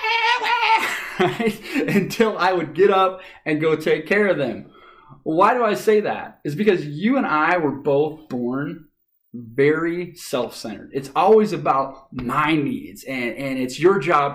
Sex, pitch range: male, 140-205 Hz